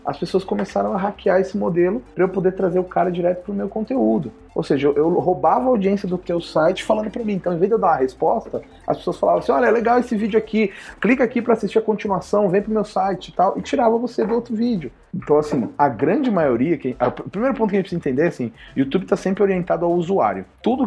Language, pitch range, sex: Portuguese, 130-195 Hz, male